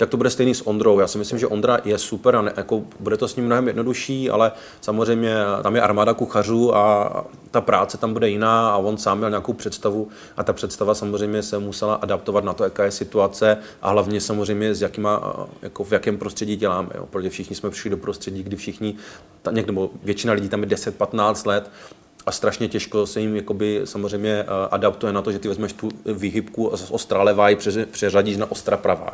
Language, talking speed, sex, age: Czech, 210 wpm, male, 30-49